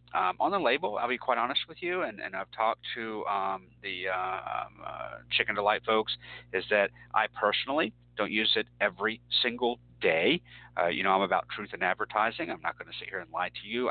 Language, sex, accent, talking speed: English, male, American, 220 wpm